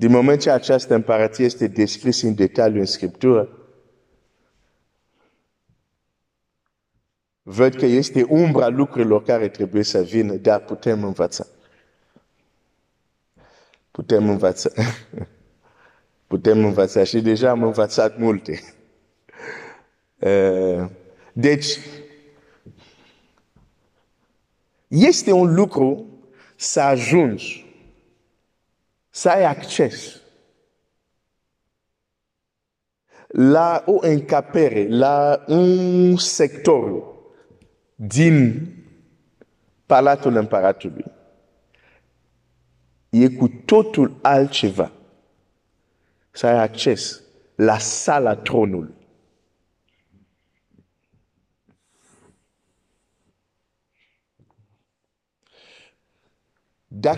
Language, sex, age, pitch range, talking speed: Romanian, male, 50-69, 100-145 Hz, 65 wpm